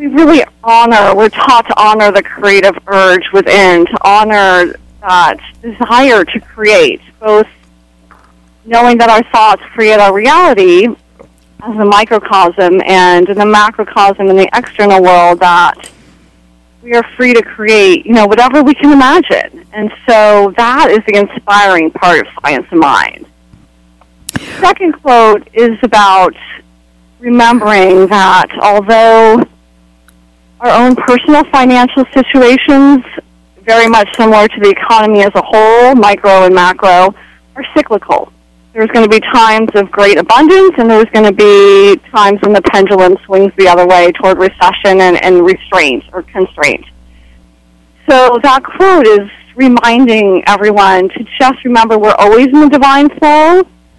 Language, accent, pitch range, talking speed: English, American, 185-240 Hz, 145 wpm